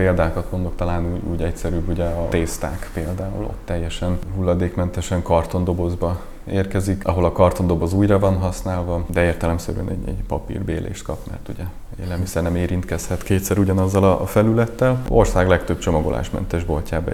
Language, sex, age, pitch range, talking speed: Hungarian, male, 20-39, 90-100 Hz, 140 wpm